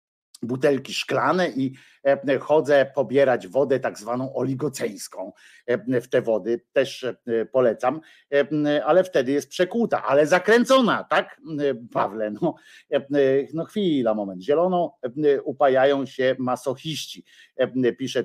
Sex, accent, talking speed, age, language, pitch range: male, native, 100 wpm, 50-69, Polish, 120-150 Hz